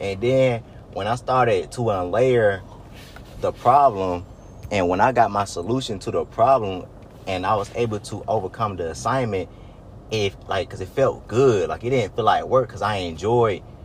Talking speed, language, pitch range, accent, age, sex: 180 wpm, English, 90-115 Hz, American, 30-49, male